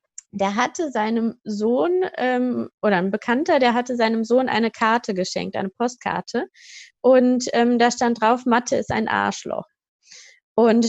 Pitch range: 210-260 Hz